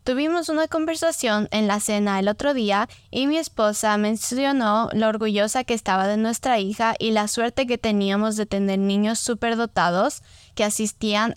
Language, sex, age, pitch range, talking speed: Spanish, female, 10-29, 205-245 Hz, 165 wpm